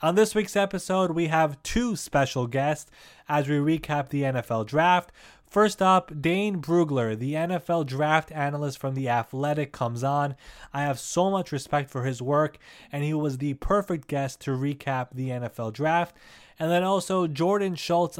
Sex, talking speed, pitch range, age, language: male, 170 wpm, 135-170 Hz, 20-39, English